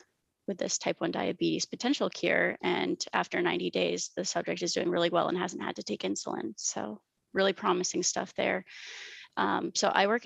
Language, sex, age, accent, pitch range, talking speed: English, female, 20-39, American, 180-250 Hz, 185 wpm